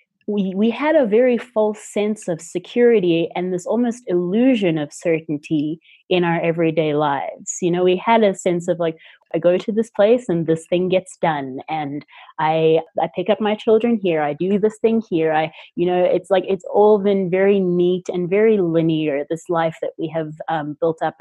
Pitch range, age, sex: 165-210 Hz, 30-49, female